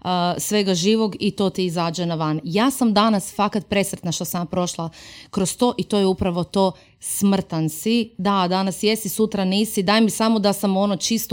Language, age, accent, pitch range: Croatian, 30-49, native, 175-210 Hz